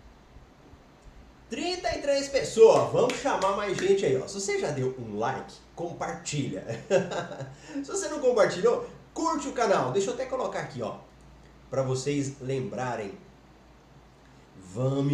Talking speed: 120 wpm